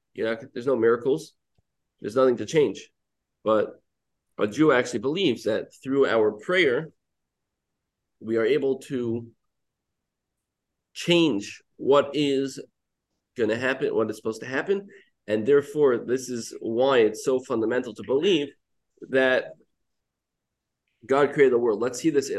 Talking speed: 130 wpm